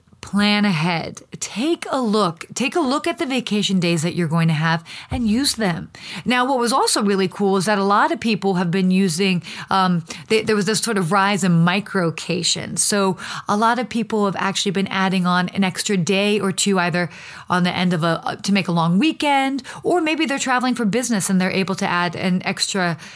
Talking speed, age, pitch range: 220 wpm, 30-49, 185-235 Hz